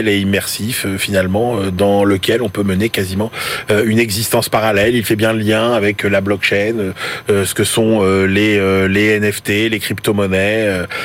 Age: 30-49